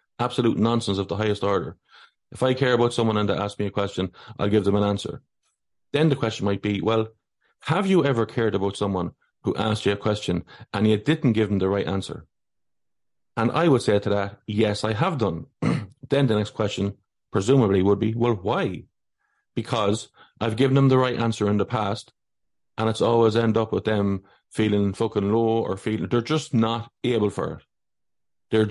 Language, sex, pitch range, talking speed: English, male, 105-120 Hz, 200 wpm